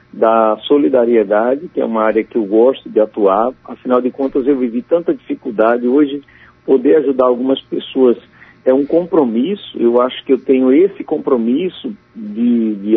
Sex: male